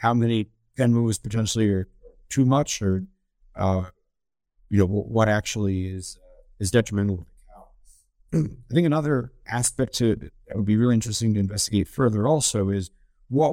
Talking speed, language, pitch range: 165 wpm, English, 100-120 Hz